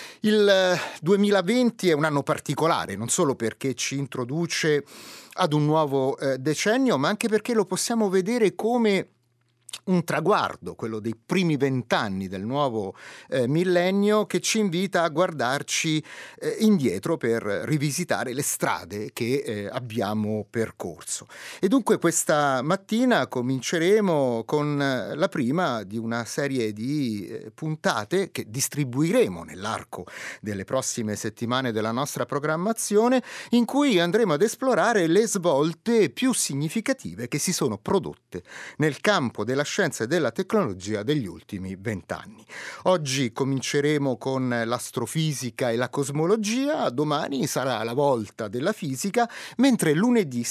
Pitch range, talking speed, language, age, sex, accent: 120-190 Hz, 125 wpm, Italian, 30-49, male, native